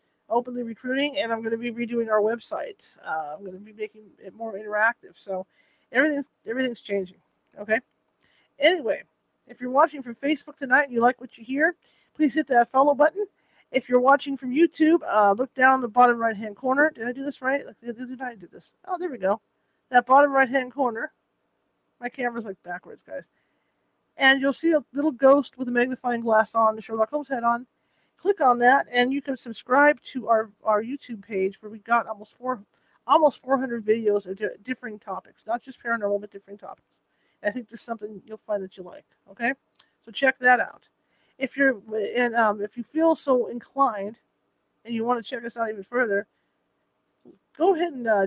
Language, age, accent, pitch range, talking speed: English, 40-59, American, 220-275 Hz, 195 wpm